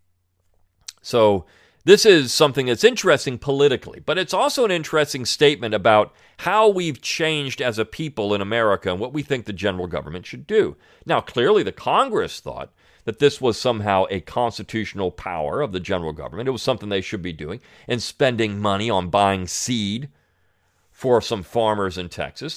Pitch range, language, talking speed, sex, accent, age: 90-140 Hz, English, 175 wpm, male, American, 40-59